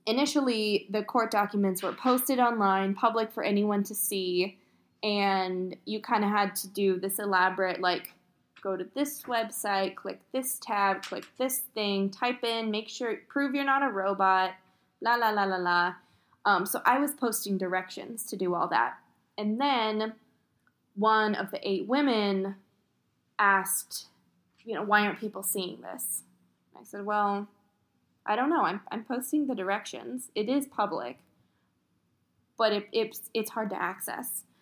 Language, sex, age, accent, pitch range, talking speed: English, female, 20-39, American, 190-225 Hz, 160 wpm